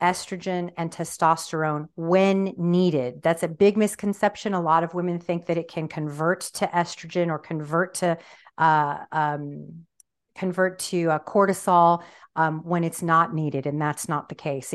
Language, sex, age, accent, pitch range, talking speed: English, female, 40-59, American, 160-185 Hz, 160 wpm